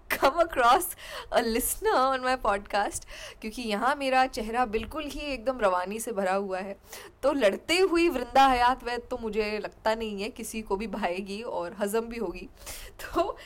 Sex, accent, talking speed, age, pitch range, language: female, native, 175 wpm, 10-29, 200-255 Hz, Hindi